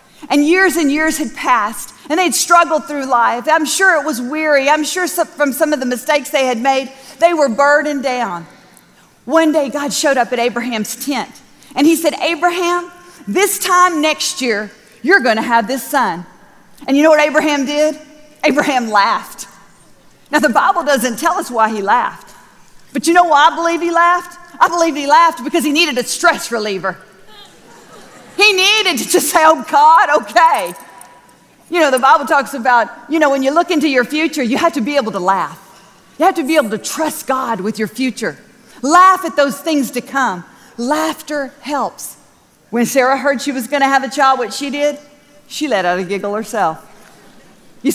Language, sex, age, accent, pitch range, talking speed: English, female, 40-59, American, 230-315 Hz, 195 wpm